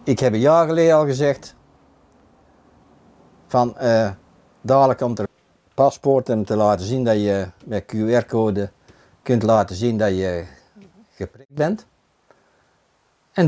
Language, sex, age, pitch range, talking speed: Dutch, male, 60-79, 105-150 Hz, 130 wpm